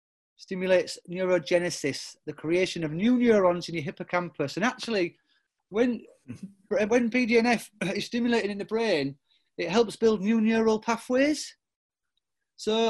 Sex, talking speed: male, 125 wpm